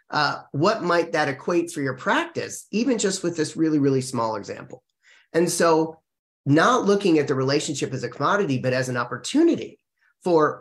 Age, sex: 30-49, male